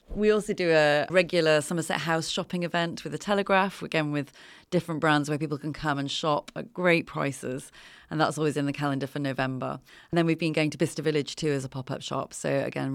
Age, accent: 30-49, British